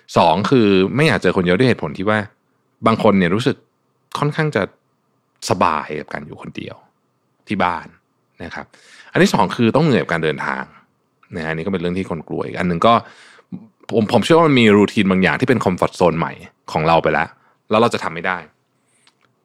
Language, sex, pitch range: Thai, male, 90-130 Hz